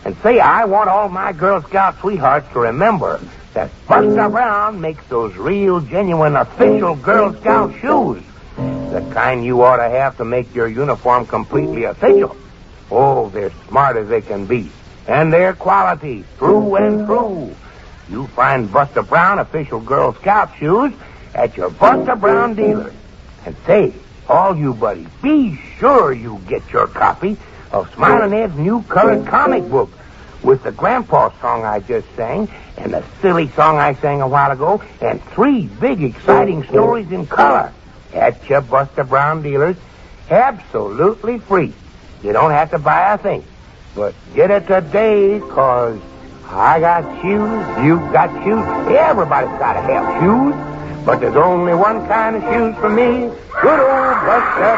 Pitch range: 145-220 Hz